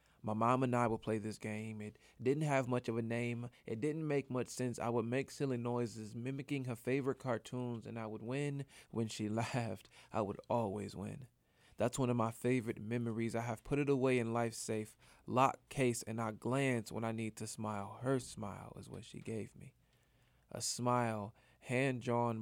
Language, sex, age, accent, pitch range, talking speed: English, male, 20-39, American, 110-125 Hz, 200 wpm